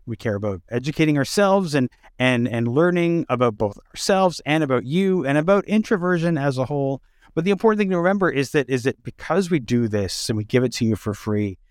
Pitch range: 115-170 Hz